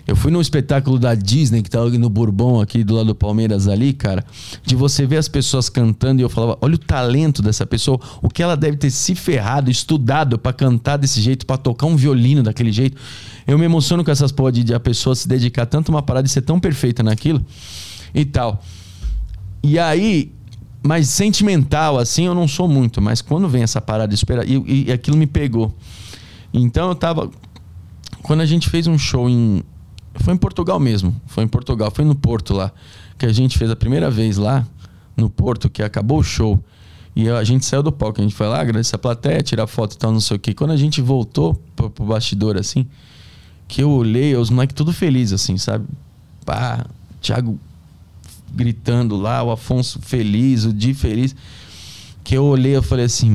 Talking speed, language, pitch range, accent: 205 wpm, Portuguese, 105-135 Hz, Brazilian